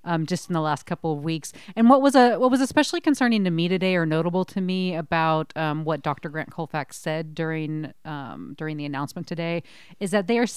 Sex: female